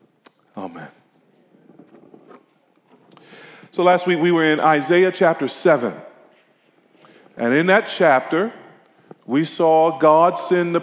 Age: 40-59